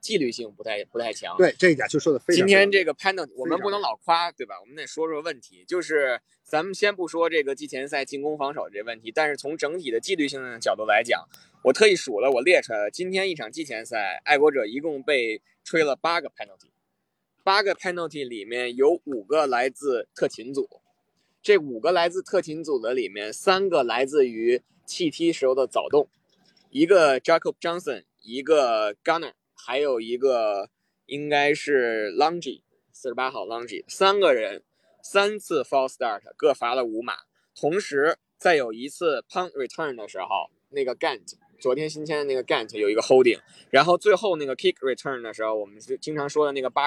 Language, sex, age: Chinese, male, 20-39